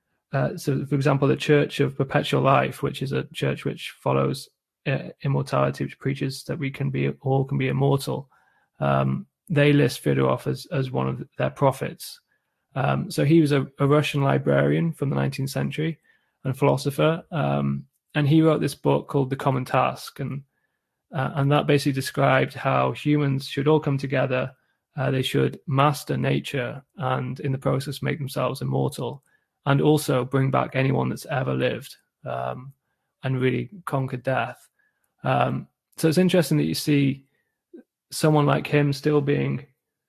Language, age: English, 20-39